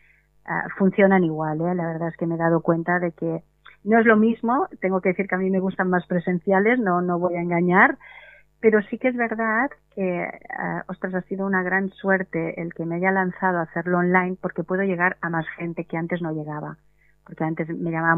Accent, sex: Spanish, female